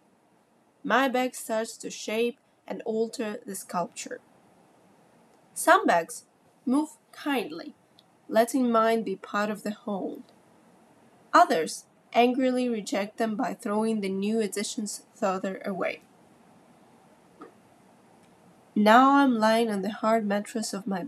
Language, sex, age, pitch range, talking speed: English, female, 20-39, 205-240 Hz, 115 wpm